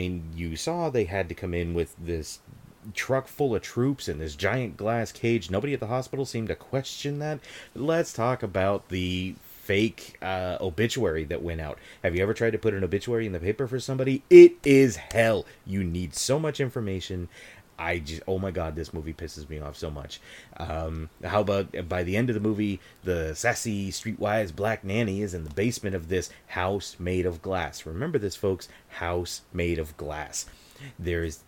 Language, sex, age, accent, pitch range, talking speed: English, male, 30-49, American, 90-125 Hz, 195 wpm